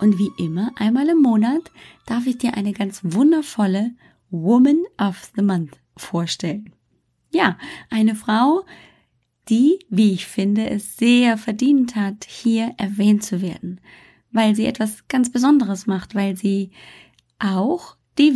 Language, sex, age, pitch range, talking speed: German, female, 20-39, 195-245 Hz, 135 wpm